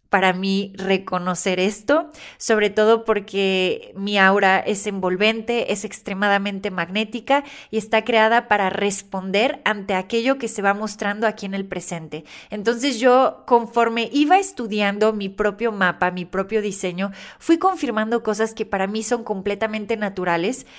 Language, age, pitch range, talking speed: Spanish, 20-39, 200-235 Hz, 140 wpm